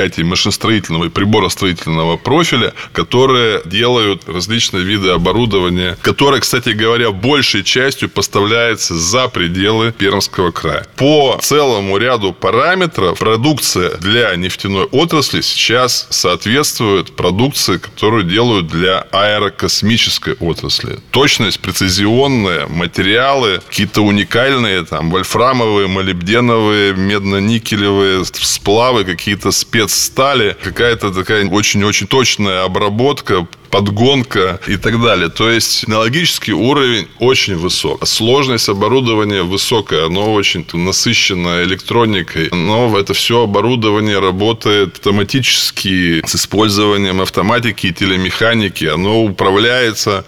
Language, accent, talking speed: Russian, native, 100 wpm